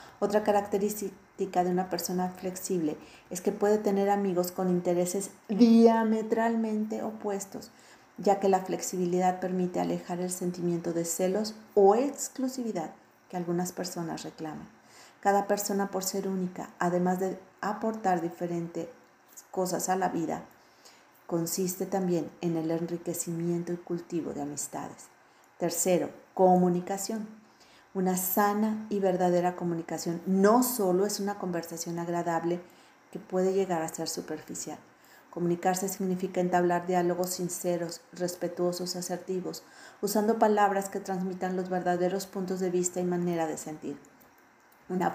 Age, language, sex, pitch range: 40-59, Spanish, female, 175-200 Hz